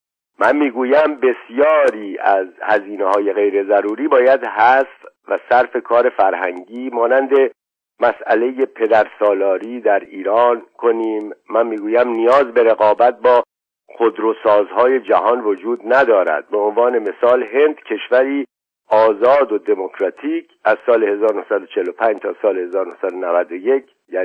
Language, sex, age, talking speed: Persian, male, 50-69, 110 wpm